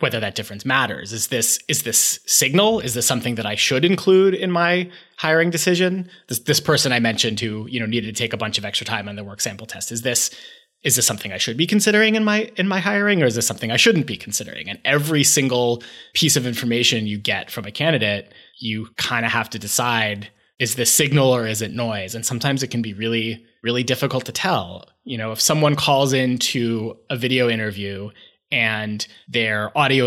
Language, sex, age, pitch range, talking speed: English, male, 20-39, 110-140 Hz, 220 wpm